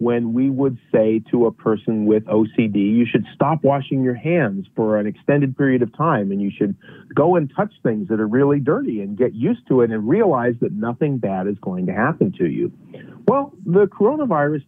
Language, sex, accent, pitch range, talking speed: English, male, American, 110-160 Hz, 210 wpm